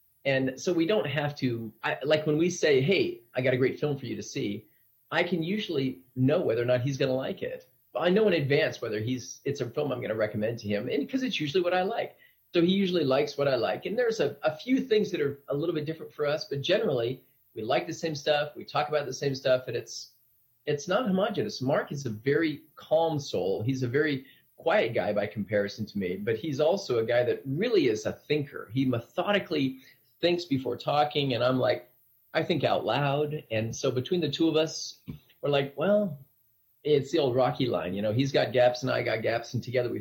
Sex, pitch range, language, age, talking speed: male, 125-165 Hz, English, 30-49, 240 wpm